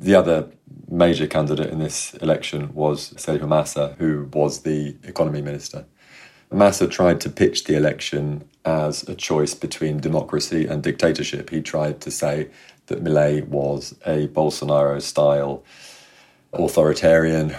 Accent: British